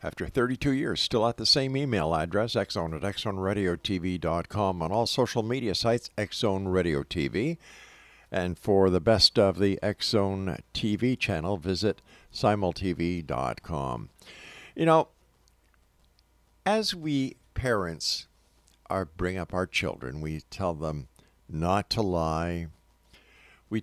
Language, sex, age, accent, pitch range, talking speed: English, male, 50-69, American, 80-120 Hz, 120 wpm